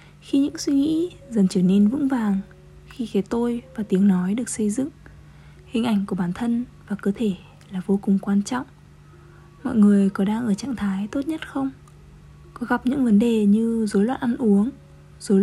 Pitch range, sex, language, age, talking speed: 195-245 Hz, female, Vietnamese, 20-39, 200 wpm